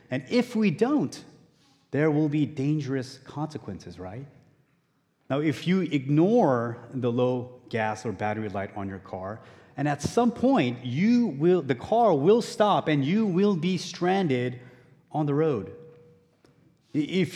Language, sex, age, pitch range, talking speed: English, male, 30-49, 130-180 Hz, 145 wpm